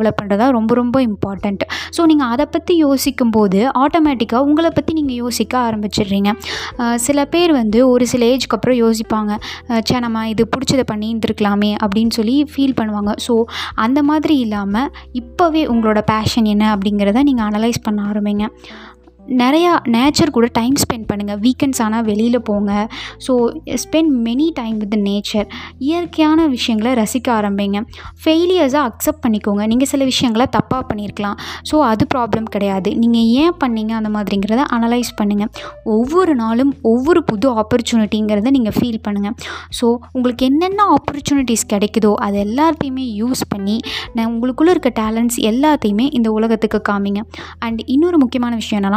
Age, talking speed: 20-39, 125 wpm